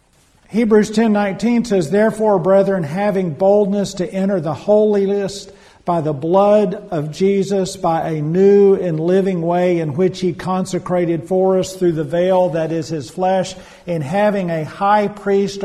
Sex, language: male, English